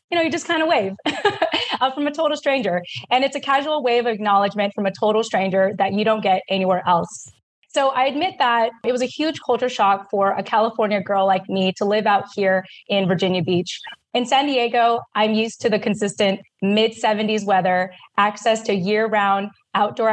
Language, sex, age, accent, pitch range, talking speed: English, female, 20-39, American, 195-245 Hz, 195 wpm